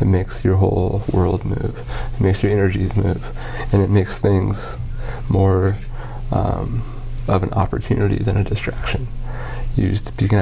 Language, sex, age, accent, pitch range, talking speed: English, male, 30-49, American, 95-120 Hz, 150 wpm